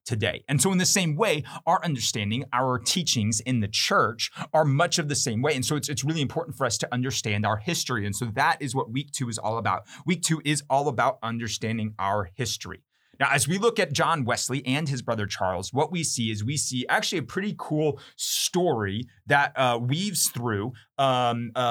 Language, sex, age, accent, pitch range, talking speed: English, male, 30-49, American, 110-150 Hz, 215 wpm